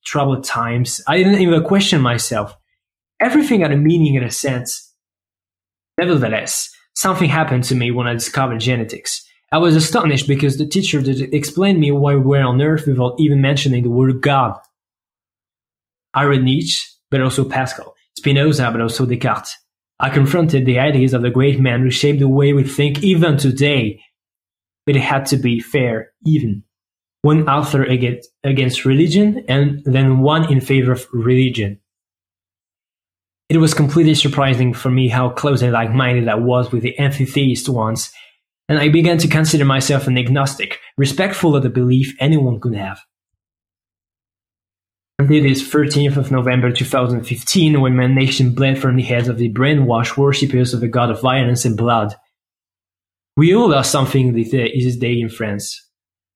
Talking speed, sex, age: 160 wpm, male, 20-39